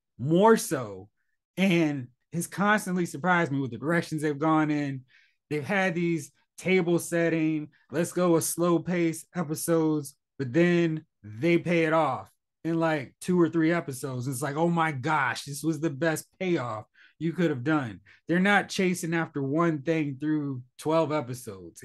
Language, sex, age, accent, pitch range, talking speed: English, male, 20-39, American, 140-170 Hz, 160 wpm